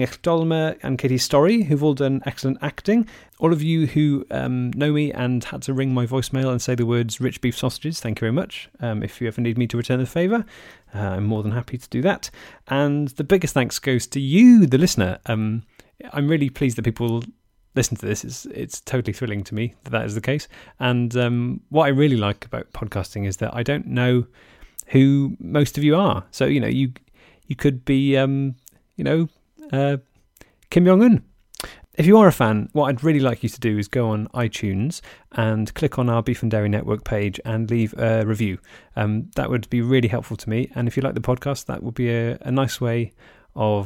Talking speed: 220 wpm